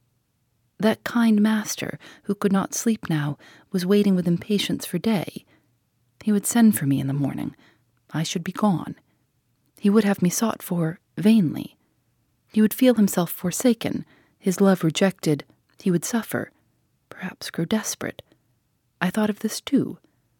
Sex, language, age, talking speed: female, English, 40-59, 155 wpm